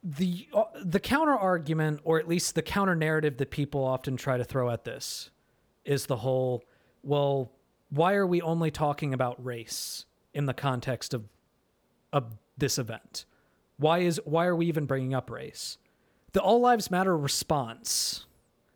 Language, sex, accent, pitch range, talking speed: English, male, American, 125-155 Hz, 155 wpm